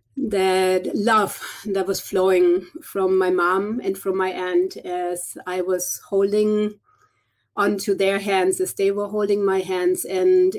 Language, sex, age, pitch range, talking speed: English, female, 30-49, 190-255 Hz, 145 wpm